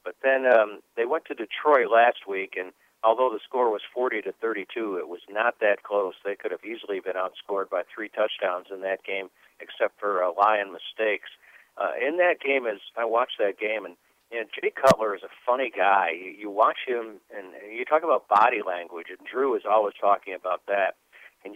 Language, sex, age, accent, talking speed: English, male, 50-69, American, 205 wpm